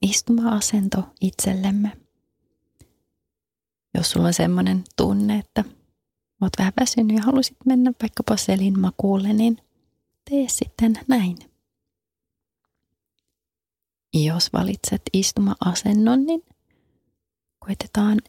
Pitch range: 175-210 Hz